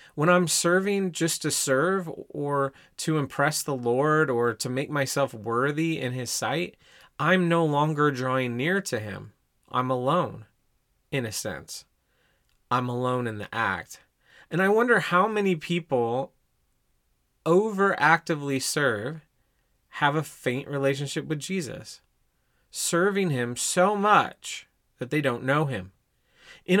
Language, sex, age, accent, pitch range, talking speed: English, male, 30-49, American, 130-170 Hz, 135 wpm